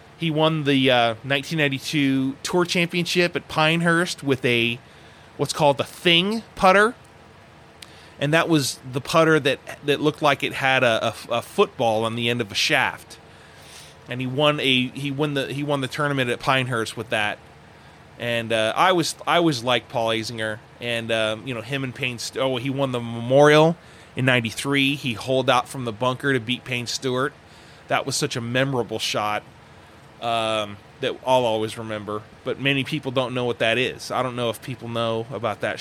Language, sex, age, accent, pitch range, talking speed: English, male, 20-39, American, 120-145 Hz, 190 wpm